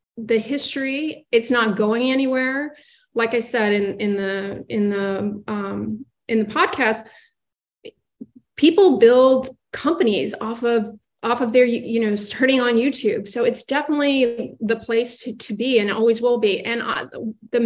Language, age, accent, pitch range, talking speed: English, 30-49, American, 220-260 Hz, 155 wpm